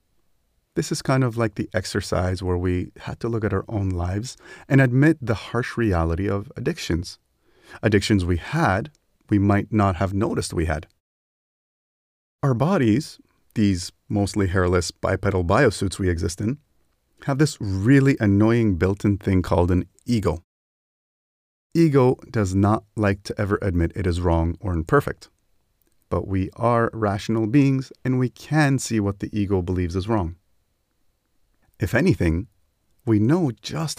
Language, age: English, 30-49